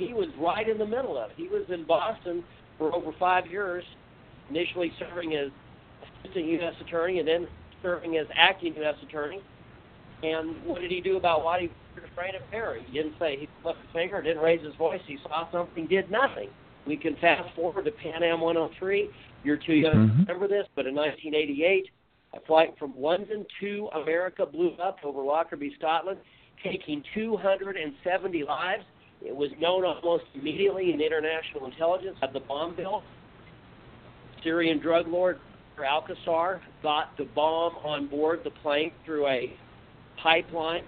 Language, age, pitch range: English, 50-69, 150-185 Hz